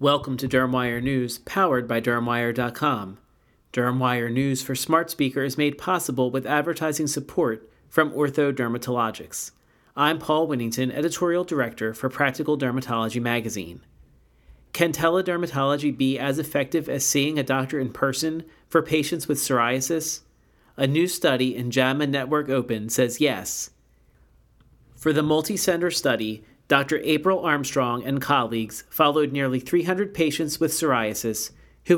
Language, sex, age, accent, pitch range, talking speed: English, male, 40-59, American, 125-155 Hz, 130 wpm